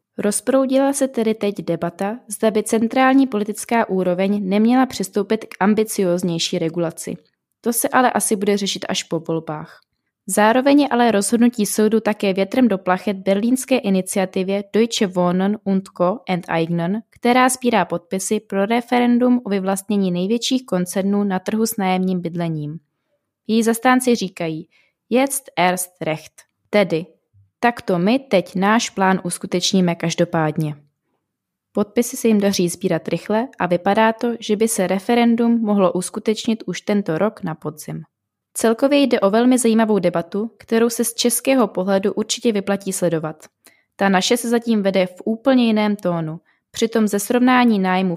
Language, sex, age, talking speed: Czech, female, 20-39, 145 wpm